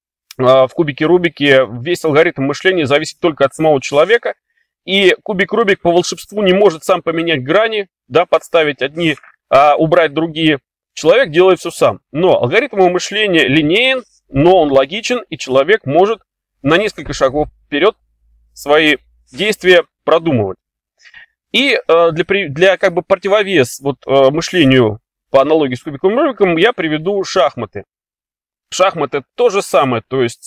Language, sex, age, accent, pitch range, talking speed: Russian, male, 30-49, native, 140-190 Hz, 135 wpm